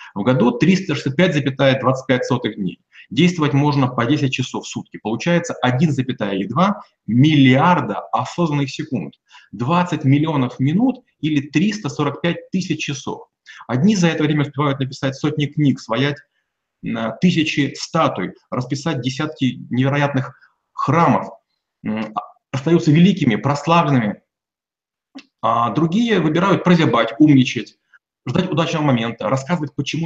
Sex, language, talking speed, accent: male, Russian, 100 wpm, native